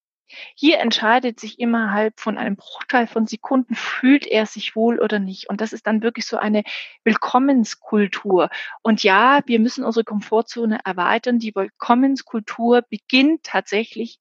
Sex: female